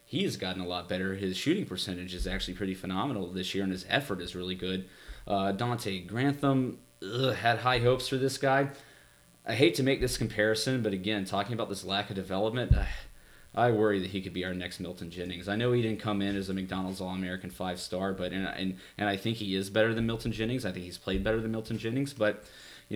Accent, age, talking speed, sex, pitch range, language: American, 30-49, 240 wpm, male, 95-125 Hz, English